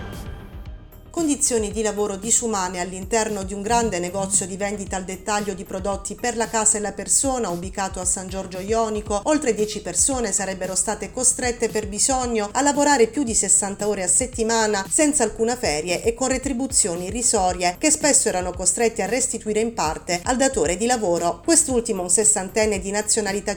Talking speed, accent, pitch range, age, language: 170 wpm, native, 195-235 Hz, 40-59, Italian